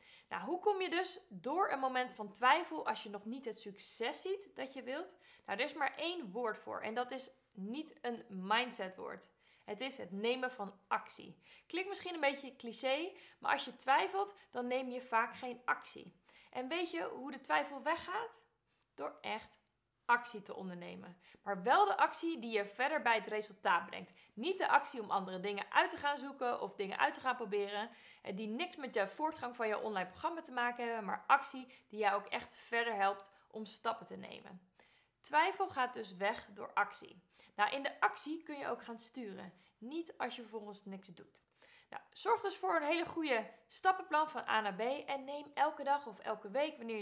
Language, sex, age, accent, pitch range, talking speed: Dutch, female, 20-39, Dutch, 210-300 Hz, 200 wpm